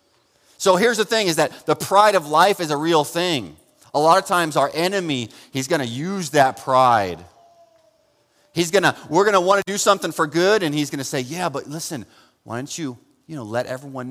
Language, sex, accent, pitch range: English, male, American, 120-165 Hz